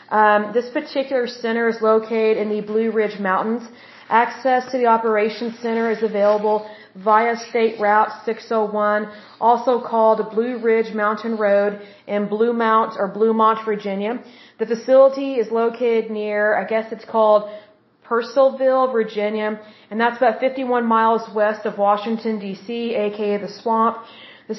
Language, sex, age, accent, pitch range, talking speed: English, female, 40-59, American, 210-235 Hz, 145 wpm